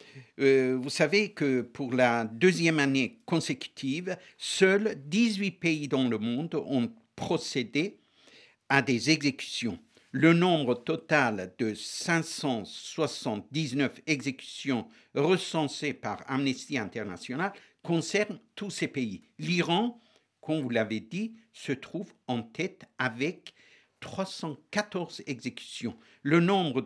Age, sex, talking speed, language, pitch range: 60-79, male, 105 wpm, French, 130-180 Hz